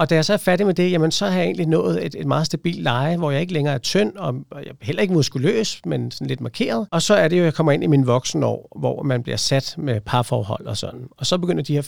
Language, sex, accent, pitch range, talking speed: Danish, male, native, 130-165 Hz, 310 wpm